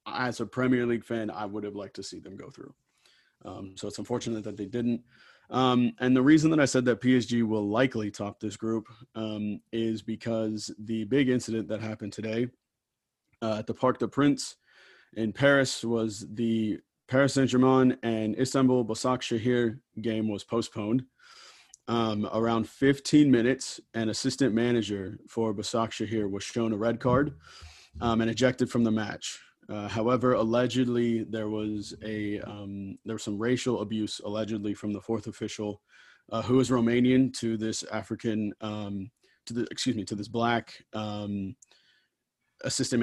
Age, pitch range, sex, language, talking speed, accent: 30-49, 105-125 Hz, male, English, 165 wpm, American